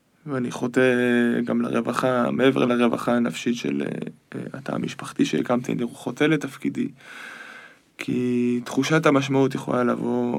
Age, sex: 20-39, male